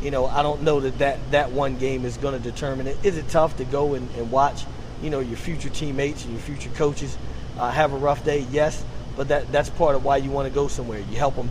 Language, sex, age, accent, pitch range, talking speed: English, male, 30-49, American, 125-140 Hz, 270 wpm